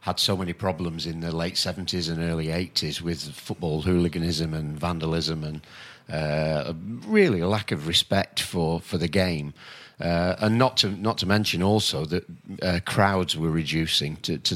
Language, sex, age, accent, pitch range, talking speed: English, male, 40-59, British, 85-105 Hz, 175 wpm